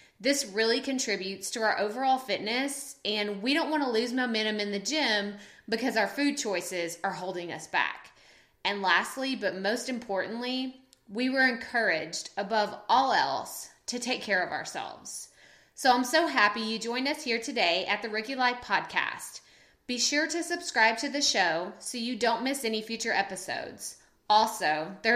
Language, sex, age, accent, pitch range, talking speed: English, female, 20-39, American, 200-265 Hz, 170 wpm